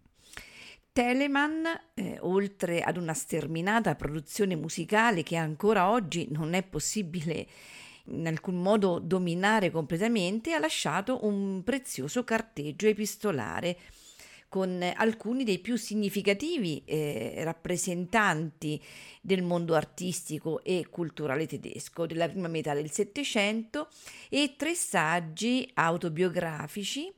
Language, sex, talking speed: Italian, female, 100 wpm